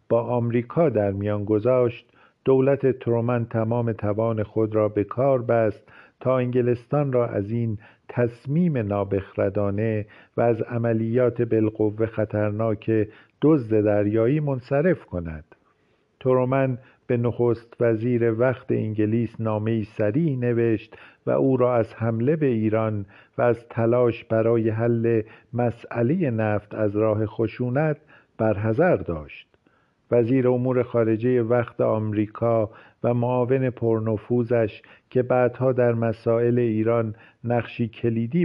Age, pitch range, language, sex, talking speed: 50-69, 110-125 Hz, Persian, male, 115 wpm